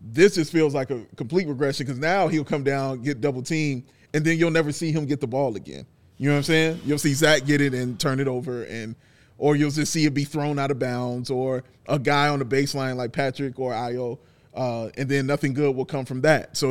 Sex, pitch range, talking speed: male, 135-170 Hz, 250 wpm